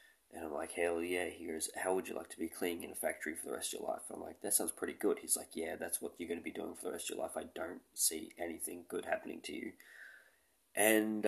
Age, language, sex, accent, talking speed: 20-39, English, male, Australian, 295 wpm